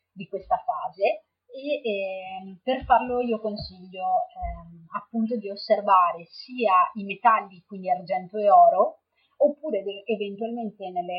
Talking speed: 130 wpm